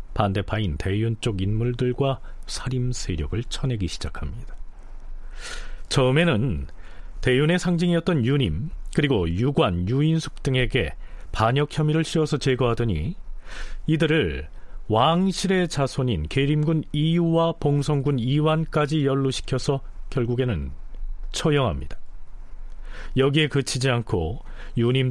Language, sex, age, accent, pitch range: Korean, male, 40-59, native, 90-145 Hz